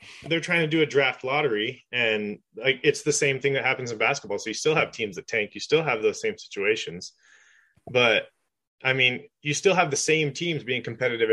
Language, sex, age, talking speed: English, male, 20-39, 215 wpm